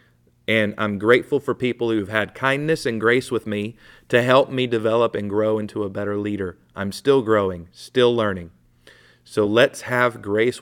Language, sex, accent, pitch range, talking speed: English, male, American, 95-125 Hz, 175 wpm